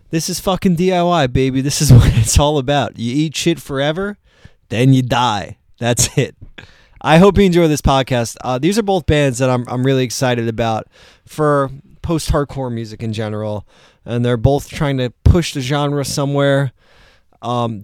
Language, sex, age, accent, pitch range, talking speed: English, male, 20-39, American, 115-145 Hz, 175 wpm